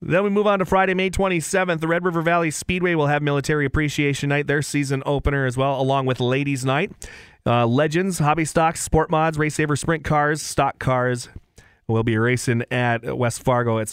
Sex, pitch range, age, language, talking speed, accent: male, 120-150 Hz, 30-49, English, 200 wpm, American